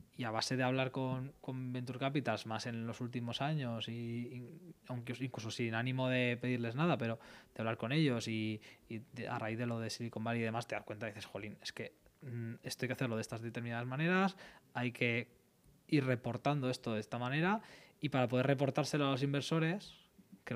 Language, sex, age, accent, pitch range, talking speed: Spanish, male, 20-39, Spanish, 115-140 Hz, 215 wpm